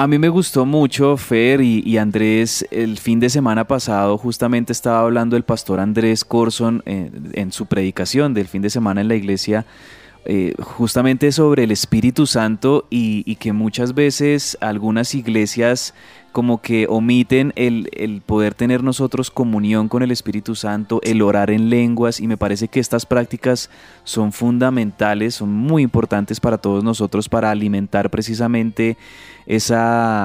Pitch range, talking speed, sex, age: 105-125 Hz, 155 wpm, male, 20-39